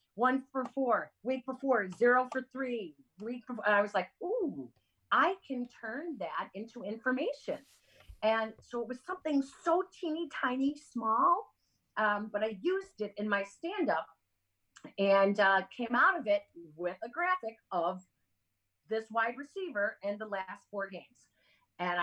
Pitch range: 170-235 Hz